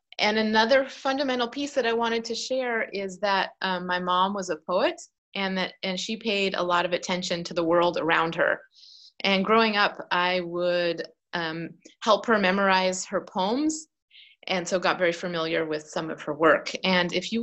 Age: 30-49